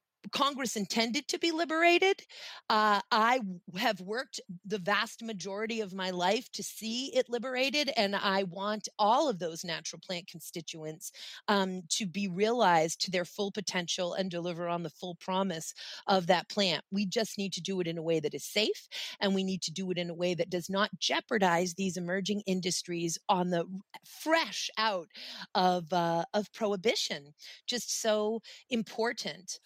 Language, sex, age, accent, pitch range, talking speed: English, female, 30-49, American, 180-220 Hz, 170 wpm